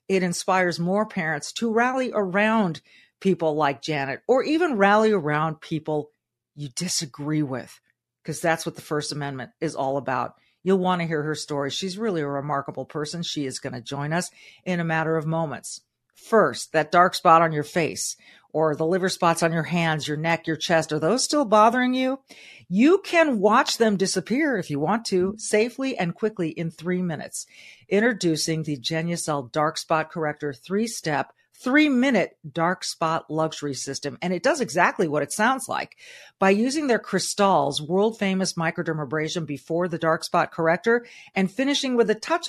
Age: 50-69